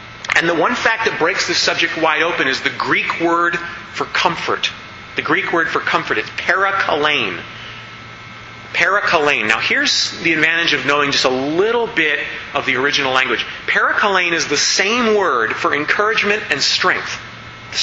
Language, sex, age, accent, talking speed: English, male, 30-49, American, 160 wpm